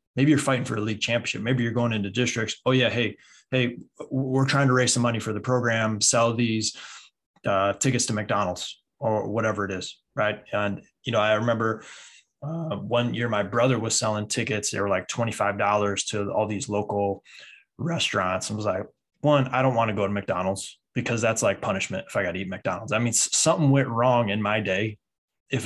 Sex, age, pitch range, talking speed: male, 20-39, 110-130 Hz, 205 wpm